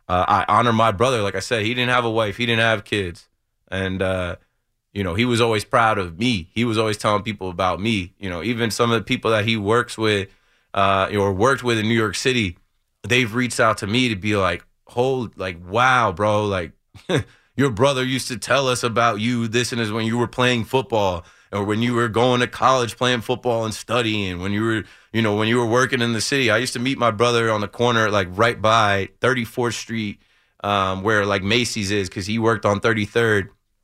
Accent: American